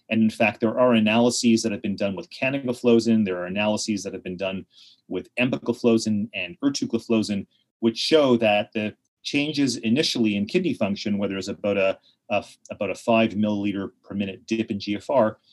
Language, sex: English, male